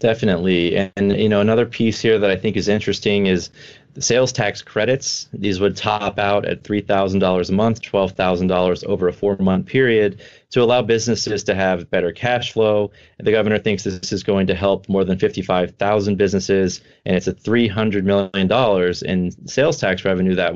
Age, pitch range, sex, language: 30-49, 95-110 Hz, male, English